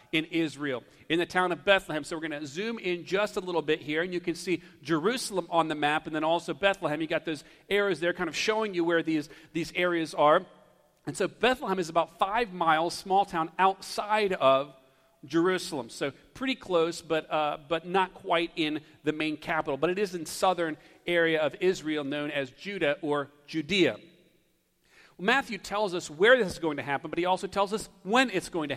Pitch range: 160-195 Hz